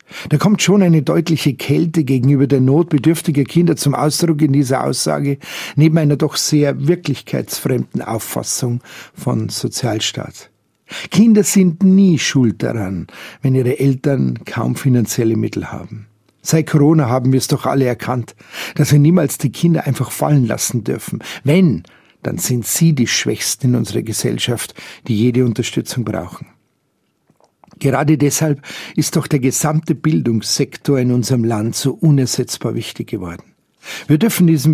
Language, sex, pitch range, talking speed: German, male, 125-160 Hz, 140 wpm